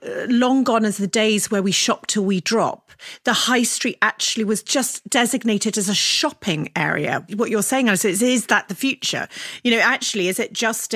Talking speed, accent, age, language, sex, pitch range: 195 wpm, British, 40-59, English, female, 190-245 Hz